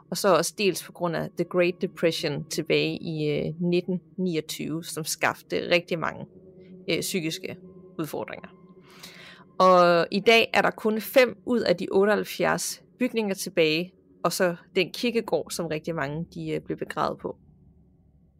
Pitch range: 165-210 Hz